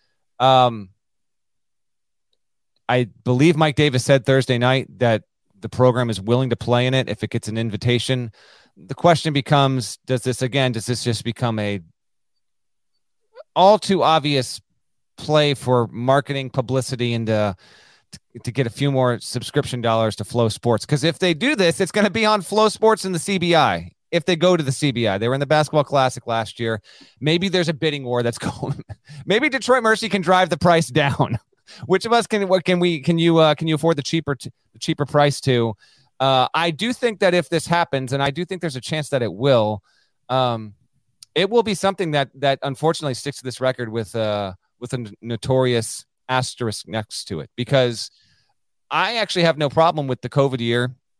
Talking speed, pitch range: 195 wpm, 120-165 Hz